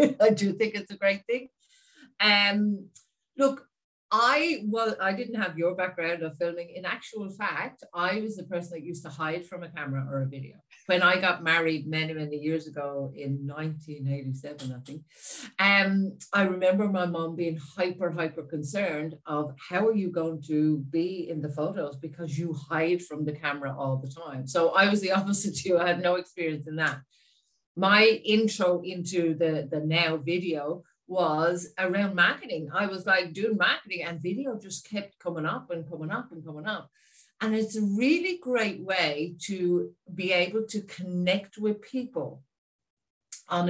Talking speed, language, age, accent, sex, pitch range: 180 wpm, English, 50-69, Irish, female, 160-200 Hz